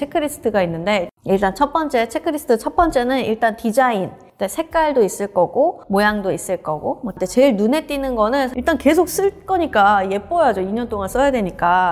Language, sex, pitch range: Korean, female, 195-275 Hz